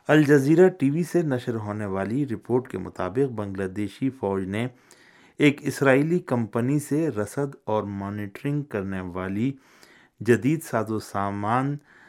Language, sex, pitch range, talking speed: Urdu, male, 100-140 Hz, 135 wpm